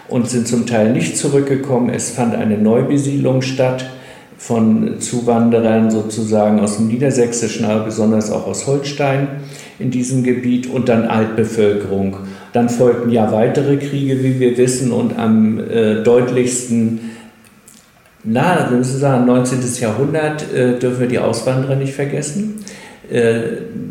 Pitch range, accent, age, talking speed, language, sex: 115-135 Hz, German, 50-69, 140 wpm, German, male